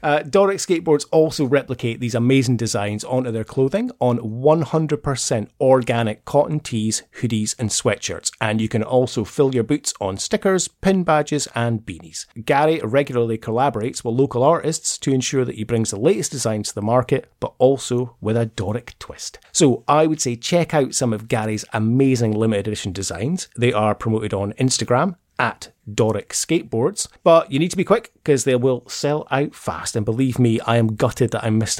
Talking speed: 185 wpm